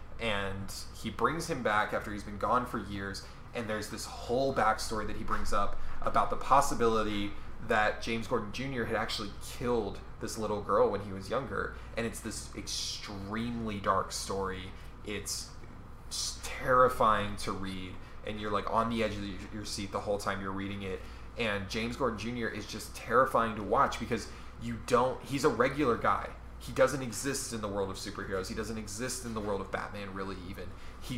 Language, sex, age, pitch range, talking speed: English, male, 20-39, 95-110 Hz, 190 wpm